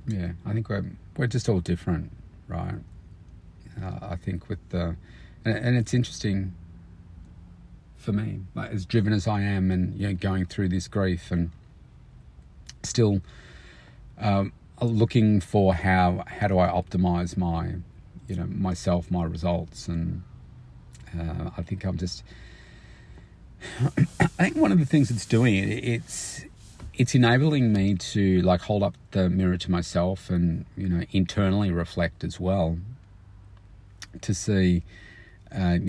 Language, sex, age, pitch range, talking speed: English, male, 40-59, 85-105 Hz, 145 wpm